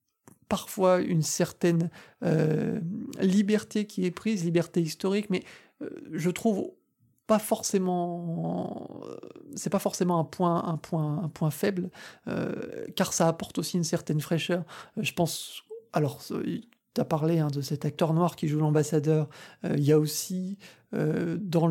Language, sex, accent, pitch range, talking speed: French, male, French, 155-190 Hz, 145 wpm